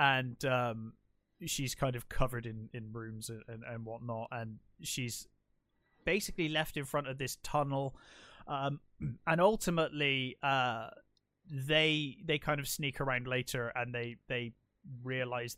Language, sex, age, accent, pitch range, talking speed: English, male, 20-39, British, 120-150 Hz, 145 wpm